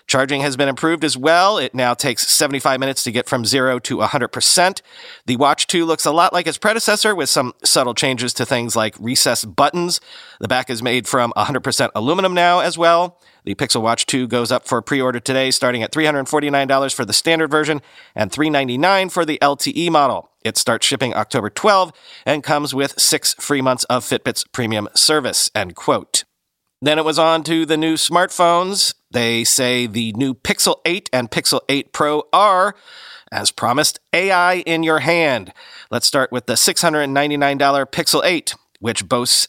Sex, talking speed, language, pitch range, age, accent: male, 180 wpm, English, 130-170 Hz, 40-59, American